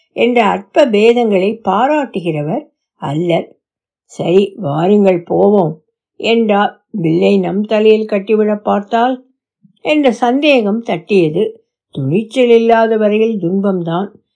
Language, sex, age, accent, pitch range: Tamil, female, 60-79, native, 170-245 Hz